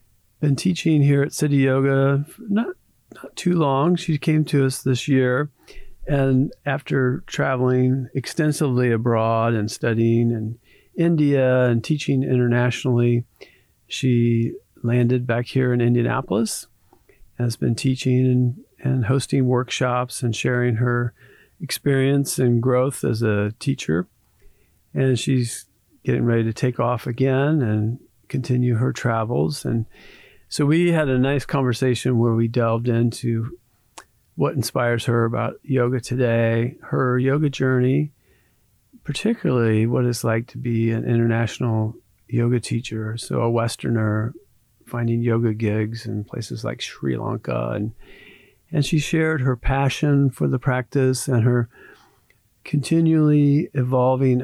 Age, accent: 40-59, American